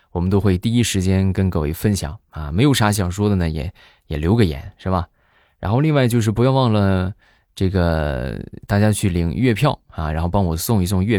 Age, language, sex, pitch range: 20-39, Chinese, male, 85-110 Hz